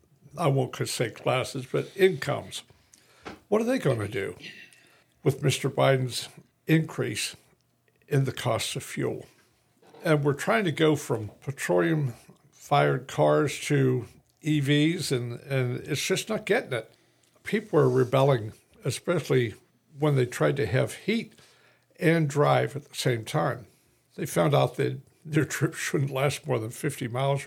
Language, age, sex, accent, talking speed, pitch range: English, 60-79, male, American, 145 wpm, 130-155 Hz